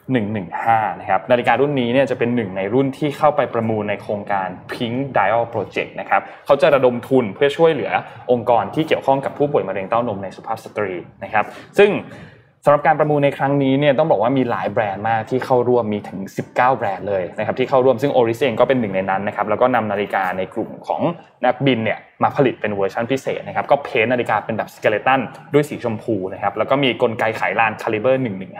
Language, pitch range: Thai, 110-140 Hz